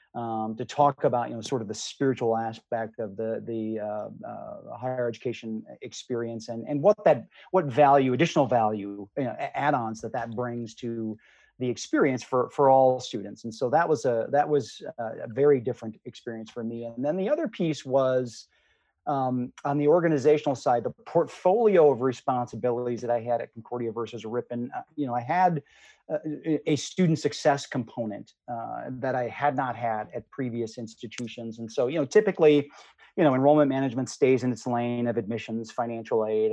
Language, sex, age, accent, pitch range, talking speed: English, male, 40-59, American, 115-145 Hz, 180 wpm